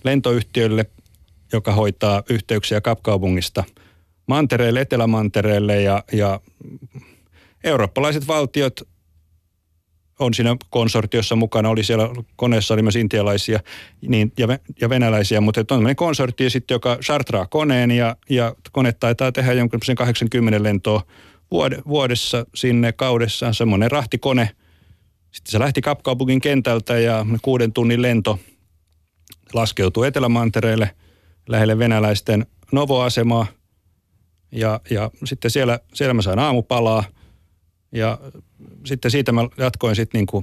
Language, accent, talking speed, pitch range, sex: Finnish, native, 110 wpm, 100-120 Hz, male